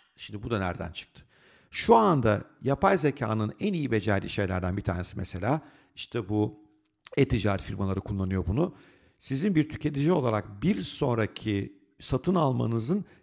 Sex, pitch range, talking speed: male, 100-150 Hz, 135 wpm